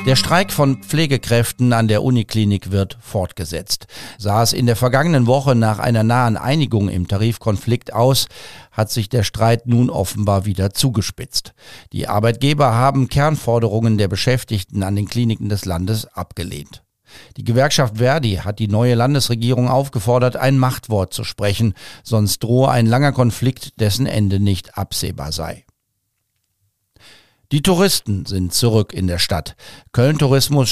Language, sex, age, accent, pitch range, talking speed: German, male, 50-69, German, 100-130 Hz, 140 wpm